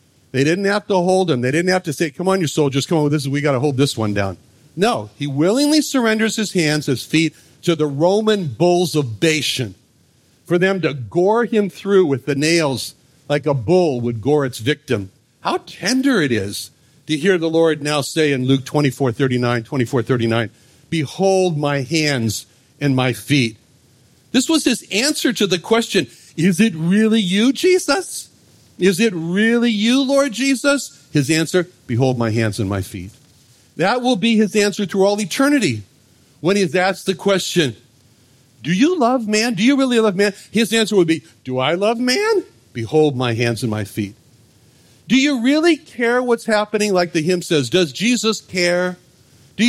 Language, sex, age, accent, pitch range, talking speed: English, male, 50-69, American, 130-210 Hz, 185 wpm